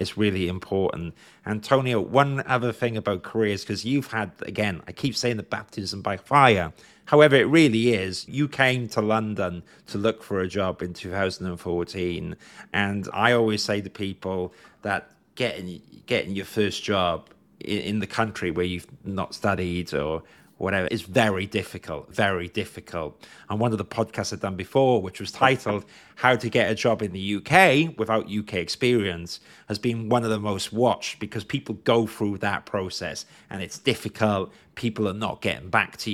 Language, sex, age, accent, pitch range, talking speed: English, male, 30-49, British, 95-115 Hz, 175 wpm